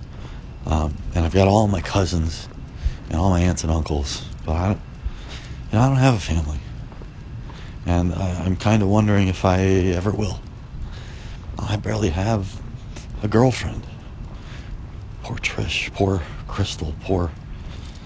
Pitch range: 80-100 Hz